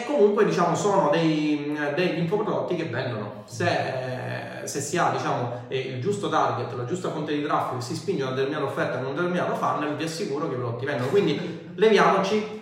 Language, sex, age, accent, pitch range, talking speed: Italian, male, 30-49, native, 130-180 Hz, 185 wpm